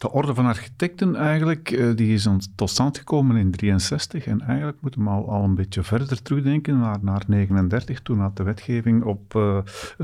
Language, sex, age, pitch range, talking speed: Dutch, male, 50-69, 100-125 Hz, 185 wpm